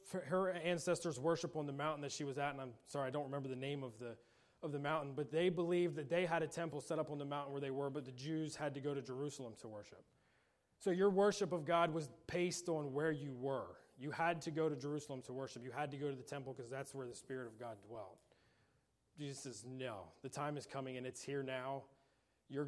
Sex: male